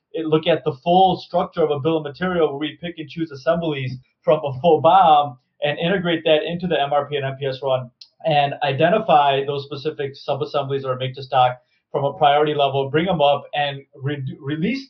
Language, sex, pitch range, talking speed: English, male, 135-165 Hz, 180 wpm